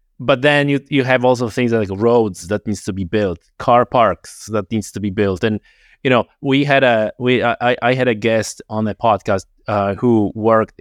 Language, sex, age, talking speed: English, male, 30-49, 215 wpm